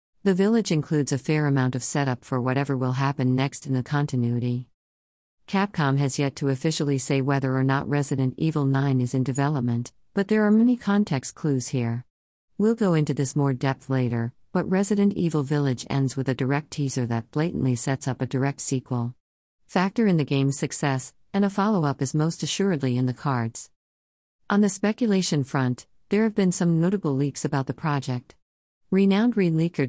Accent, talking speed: American, 185 wpm